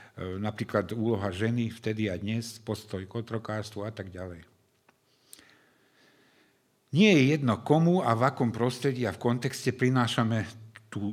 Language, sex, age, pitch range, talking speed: Slovak, male, 60-79, 110-145 Hz, 130 wpm